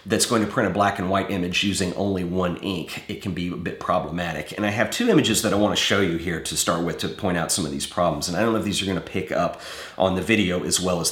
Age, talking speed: 40-59, 315 wpm